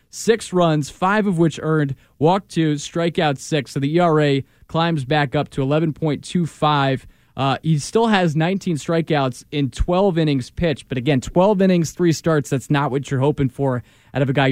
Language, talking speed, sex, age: English, 180 wpm, male, 20-39